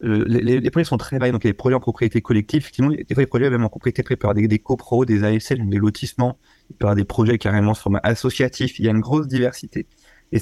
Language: French